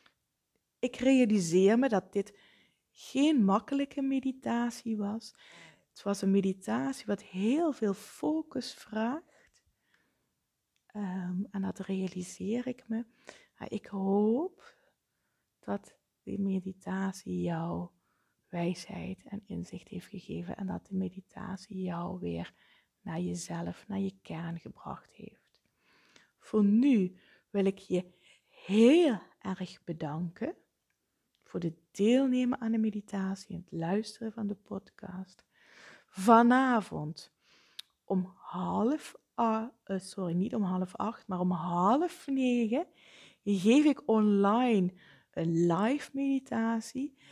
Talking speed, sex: 110 wpm, female